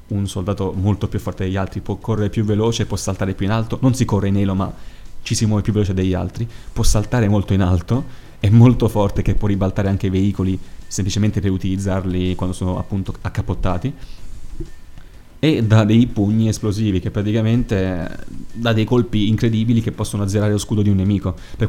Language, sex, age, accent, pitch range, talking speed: Italian, male, 20-39, native, 95-110 Hz, 195 wpm